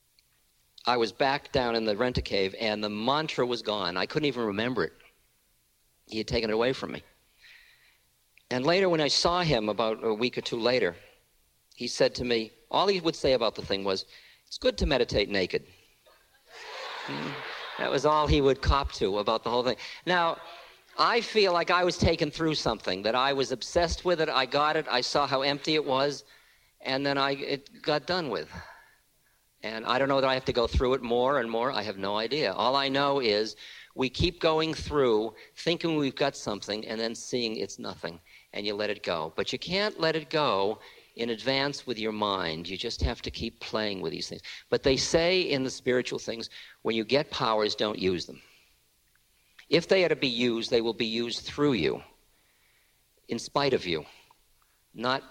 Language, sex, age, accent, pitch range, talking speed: English, male, 50-69, American, 110-150 Hz, 205 wpm